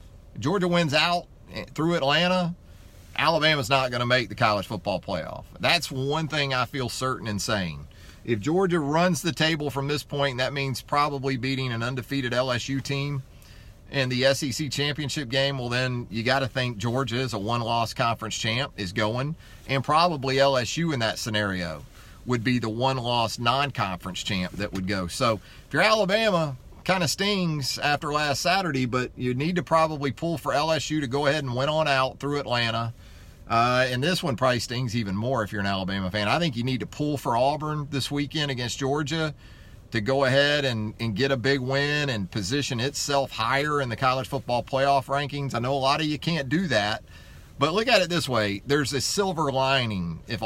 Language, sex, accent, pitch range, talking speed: English, male, American, 110-145 Hz, 195 wpm